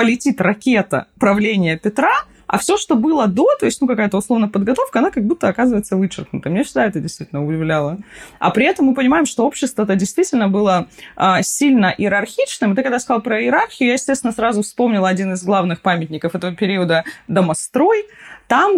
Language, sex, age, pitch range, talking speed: Russian, female, 20-39, 185-265 Hz, 175 wpm